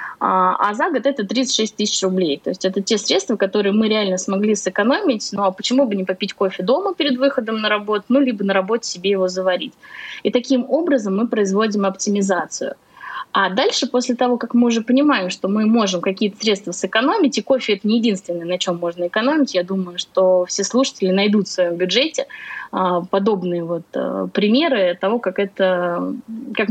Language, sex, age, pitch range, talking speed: Russian, female, 20-39, 185-240 Hz, 185 wpm